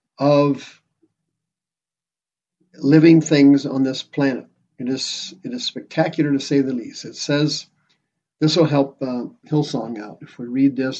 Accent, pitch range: American, 135-160 Hz